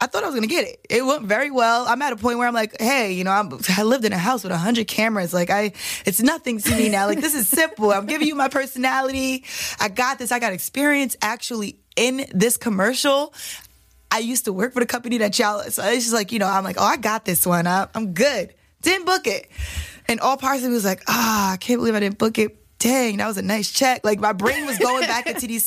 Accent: American